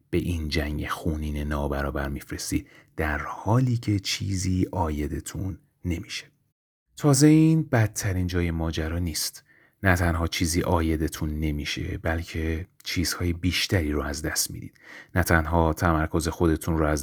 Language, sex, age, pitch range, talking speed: Persian, male, 30-49, 80-95 Hz, 125 wpm